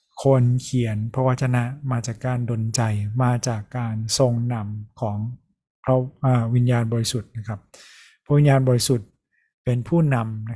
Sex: male